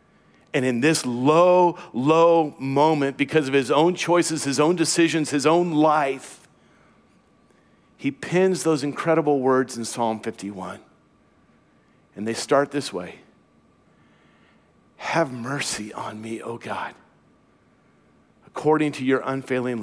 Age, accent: 50-69, American